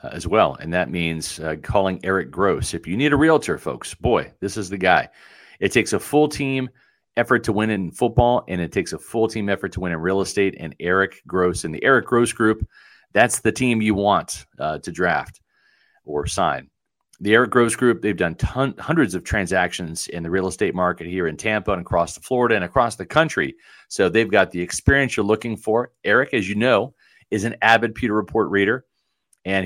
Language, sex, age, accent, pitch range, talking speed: English, male, 40-59, American, 90-115 Hz, 210 wpm